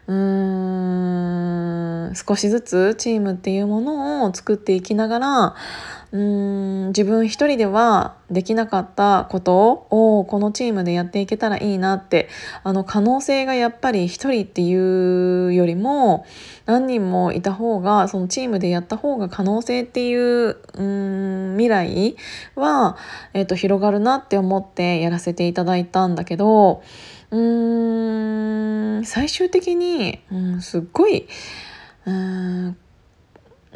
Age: 20-39